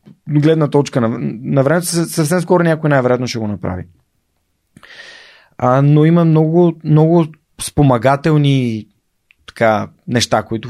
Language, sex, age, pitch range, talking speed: Bulgarian, male, 30-49, 110-135 Hz, 110 wpm